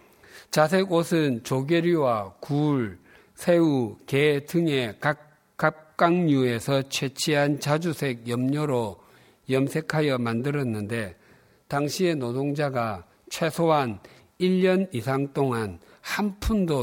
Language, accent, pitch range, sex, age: Korean, native, 120-160 Hz, male, 50-69